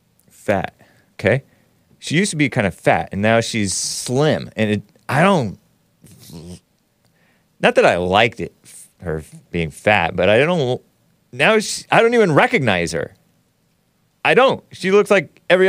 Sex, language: male, English